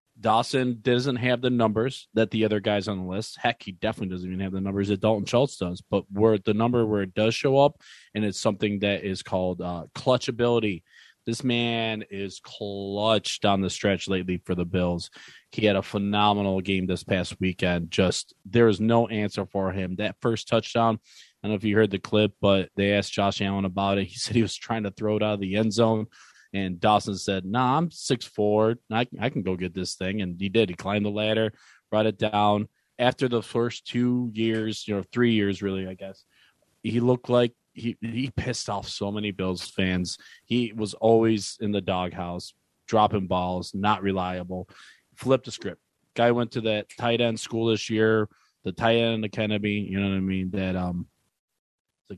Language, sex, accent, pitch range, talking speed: English, male, American, 95-115 Hz, 205 wpm